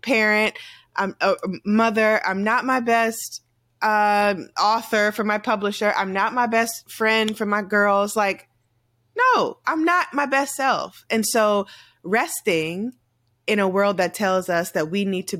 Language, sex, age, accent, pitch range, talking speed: English, female, 20-39, American, 175-225 Hz, 160 wpm